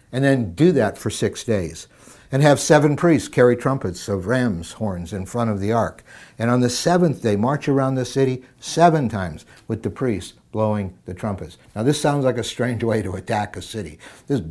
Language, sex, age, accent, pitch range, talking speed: English, male, 60-79, American, 95-120 Hz, 205 wpm